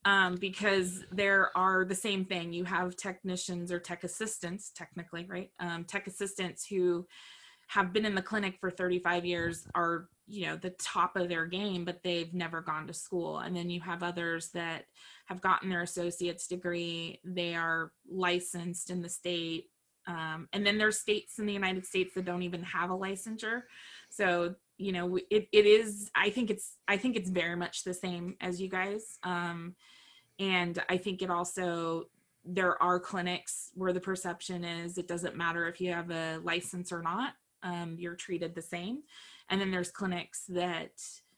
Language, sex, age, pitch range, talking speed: English, female, 20-39, 175-195 Hz, 180 wpm